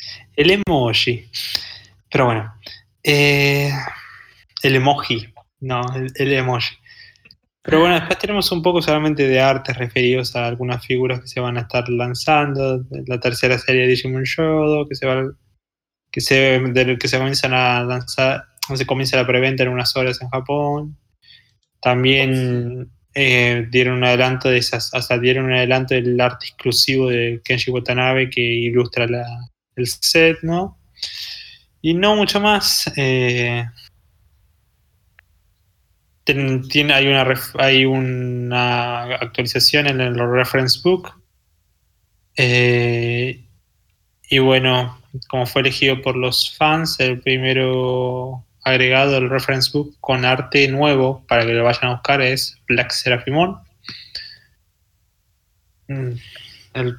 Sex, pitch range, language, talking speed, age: male, 120-135 Hz, Spanish, 130 wpm, 20-39